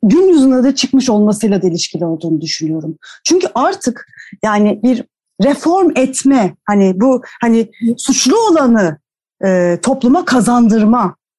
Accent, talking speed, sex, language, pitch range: native, 120 wpm, female, Turkish, 220-305 Hz